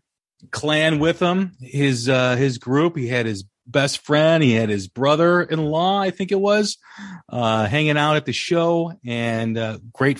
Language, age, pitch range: English, 40-59, 110-150 Hz